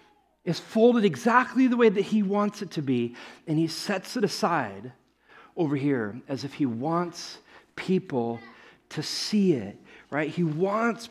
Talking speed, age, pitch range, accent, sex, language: 155 wpm, 40-59, 195-275 Hz, American, male, English